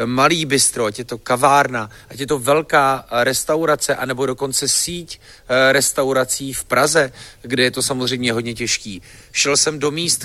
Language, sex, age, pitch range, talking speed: Czech, male, 40-59, 115-140 Hz, 160 wpm